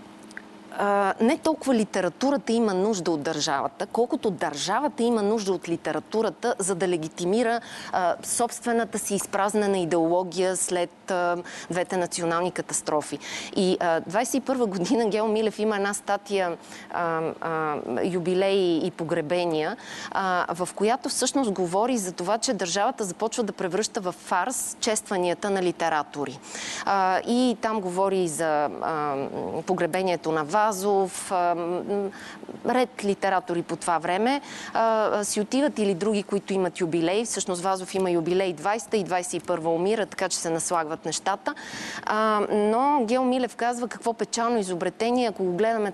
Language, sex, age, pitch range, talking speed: Bulgarian, female, 30-49, 175-220 Hz, 135 wpm